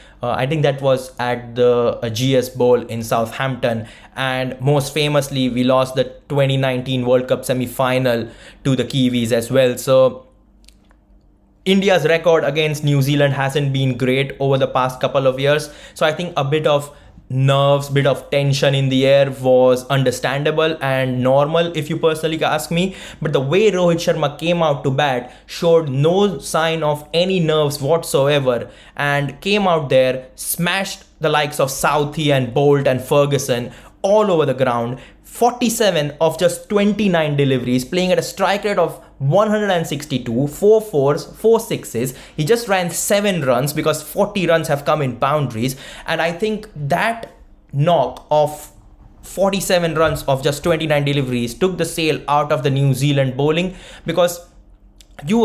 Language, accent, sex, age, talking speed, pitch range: English, Indian, male, 20-39, 160 wpm, 130-165 Hz